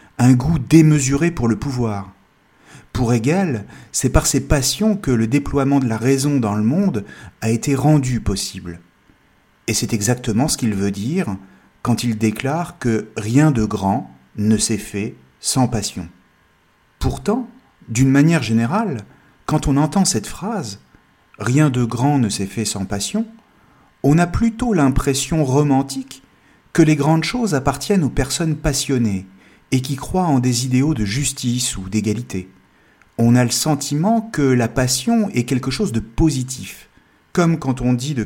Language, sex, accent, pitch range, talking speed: French, male, French, 110-155 Hz, 160 wpm